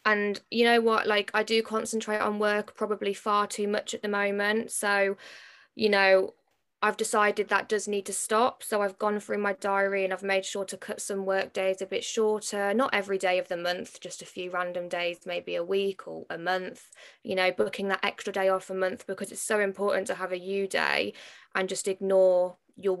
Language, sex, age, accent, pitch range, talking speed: English, female, 20-39, British, 185-210 Hz, 220 wpm